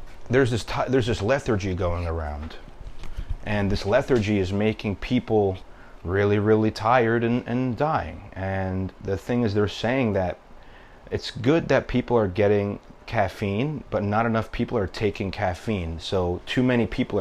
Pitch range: 95-115 Hz